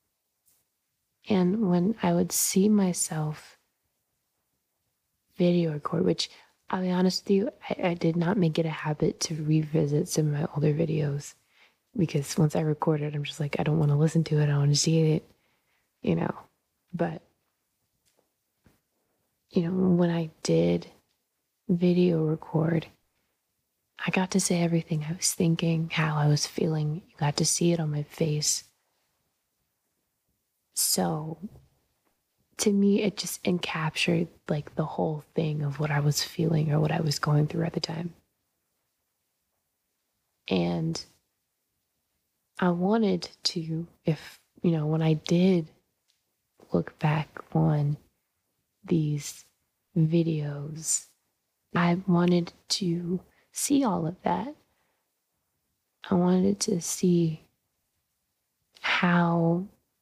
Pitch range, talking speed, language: 155-180 Hz, 130 wpm, English